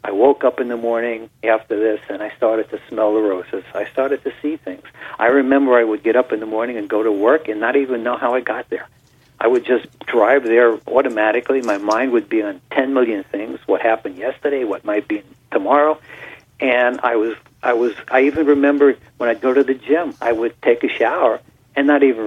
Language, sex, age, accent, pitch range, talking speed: English, male, 60-79, American, 115-140 Hz, 225 wpm